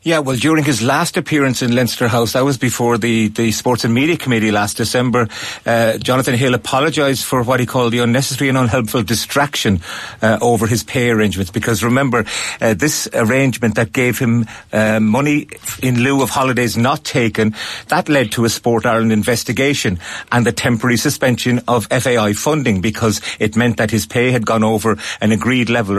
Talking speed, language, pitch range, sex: 185 wpm, English, 110-125 Hz, male